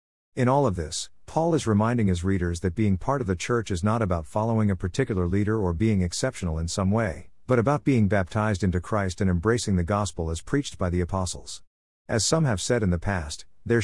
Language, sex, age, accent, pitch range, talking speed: English, male, 50-69, American, 90-115 Hz, 220 wpm